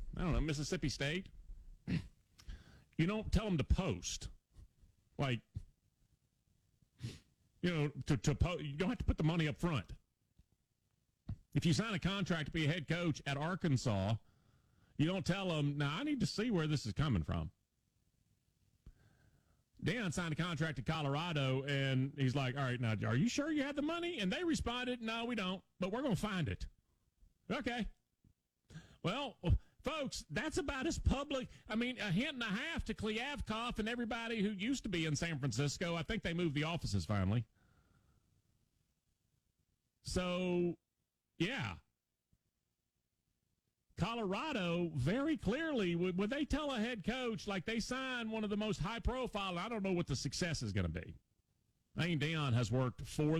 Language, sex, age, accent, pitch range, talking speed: English, male, 40-59, American, 130-210 Hz, 170 wpm